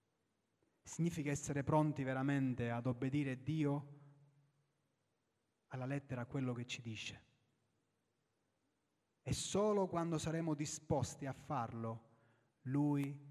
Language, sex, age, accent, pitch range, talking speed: Italian, male, 30-49, native, 130-165 Hz, 100 wpm